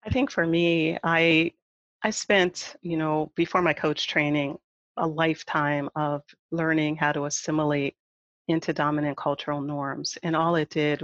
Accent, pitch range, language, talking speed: American, 150-185 Hz, English, 150 wpm